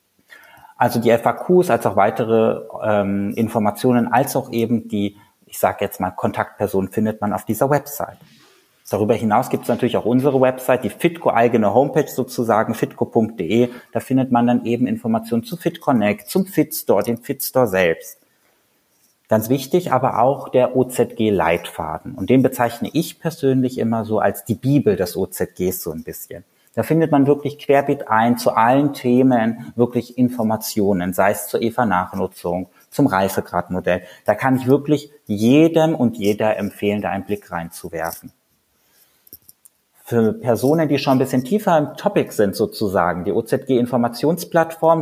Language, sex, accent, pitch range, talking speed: German, male, German, 110-140 Hz, 150 wpm